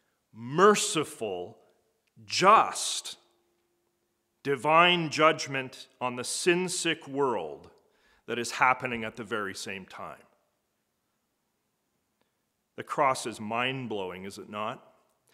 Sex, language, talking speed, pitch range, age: male, English, 90 wpm, 115-145 Hz, 40-59